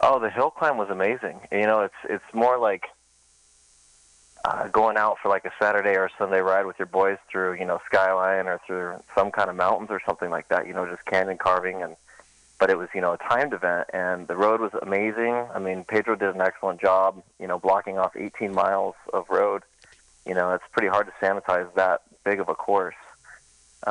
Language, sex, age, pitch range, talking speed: English, male, 30-49, 90-105 Hz, 215 wpm